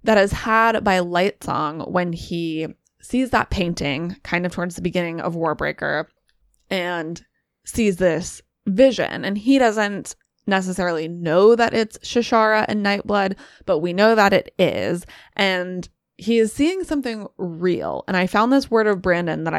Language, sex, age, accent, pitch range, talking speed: English, female, 20-39, American, 175-215 Hz, 155 wpm